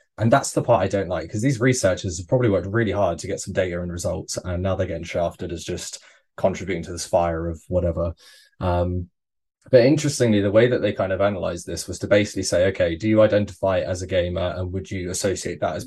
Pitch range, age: 90-115 Hz, 20-39